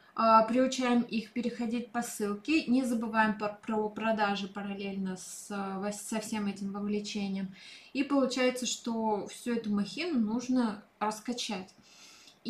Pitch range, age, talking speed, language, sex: 210-245 Hz, 20-39, 105 wpm, Russian, female